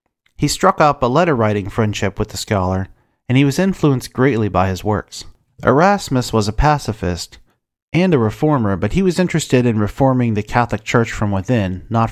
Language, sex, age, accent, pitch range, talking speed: English, male, 40-59, American, 100-140 Hz, 180 wpm